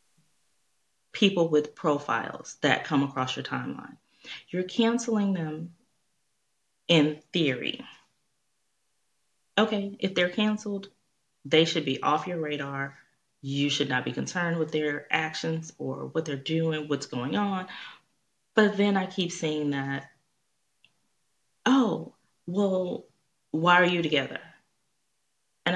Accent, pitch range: American, 140-175 Hz